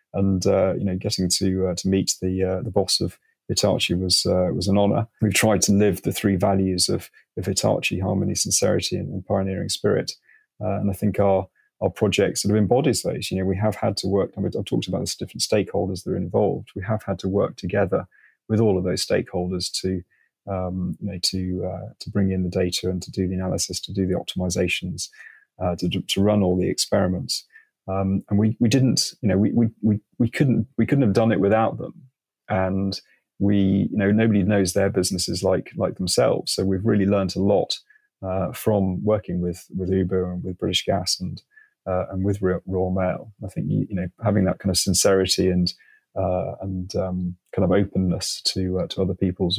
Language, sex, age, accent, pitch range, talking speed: English, male, 30-49, British, 95-105 Hz, 210 wpm